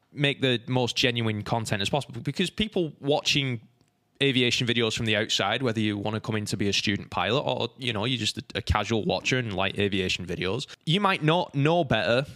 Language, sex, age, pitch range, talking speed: English, male, 10-29, 100-130 Hz, 215 wpm